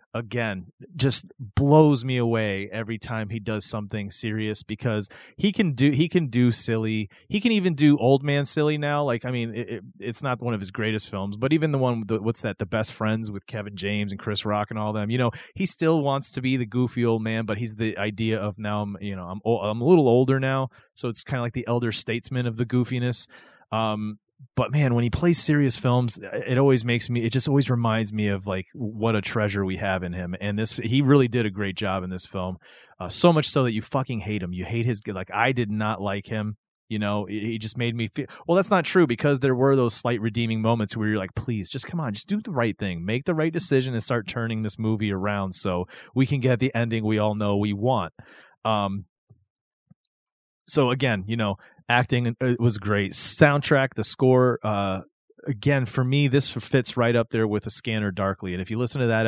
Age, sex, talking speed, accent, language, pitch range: 30-49, male, 240 wpm, American, English, 105-130 Hz